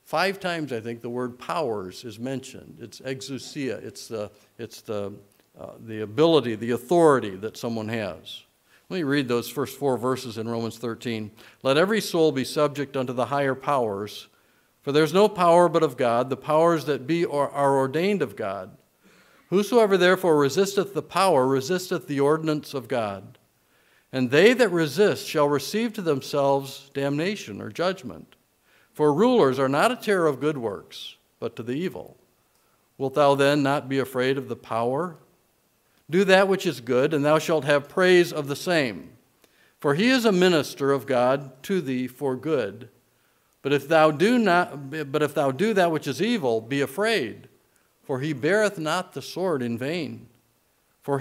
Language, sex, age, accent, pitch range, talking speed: English, male, 50-69, American, 125-170 Hz, 175 wpm